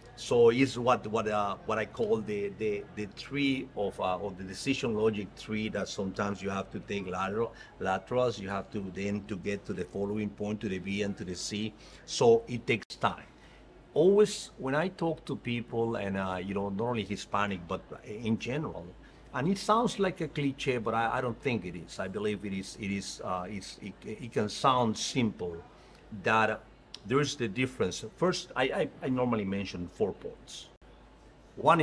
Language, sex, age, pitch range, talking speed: English, male, 50-69, 100-140 Hz, 195 wpm